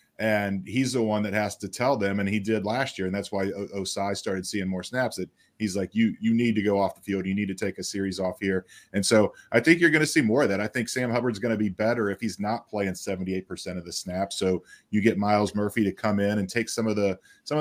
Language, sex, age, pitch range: English, male, 30-49, 100-120 Hz